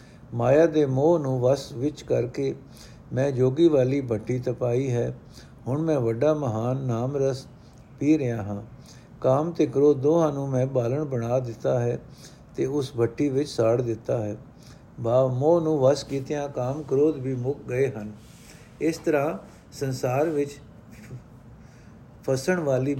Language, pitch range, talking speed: Punjabi, 125-150 Hz, 145 wpm